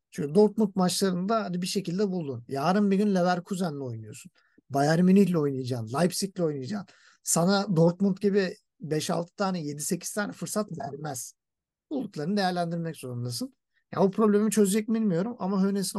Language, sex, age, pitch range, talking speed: Turkish, male, 50-69, 150-205 Hz, 130 wpm